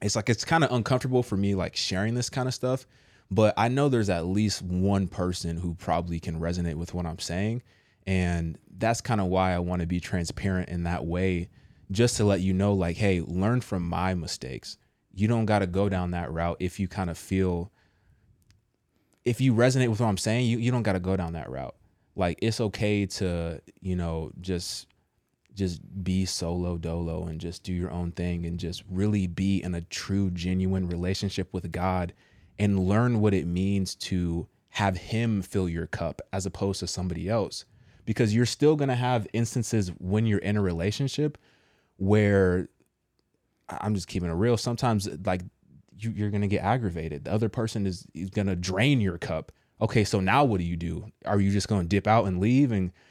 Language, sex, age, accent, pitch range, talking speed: English, male, 20-39, American, 90-110 Hz, 200 wpm